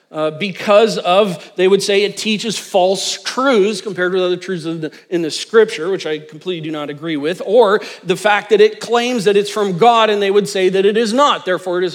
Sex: male